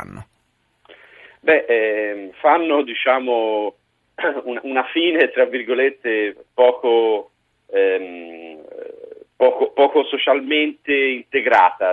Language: Italian